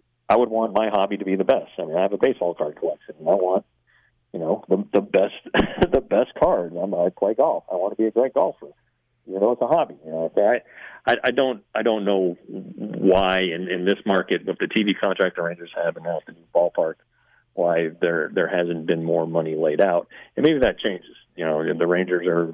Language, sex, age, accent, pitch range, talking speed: English, male, 40-59, American, 85-105 Hz, 225 wpm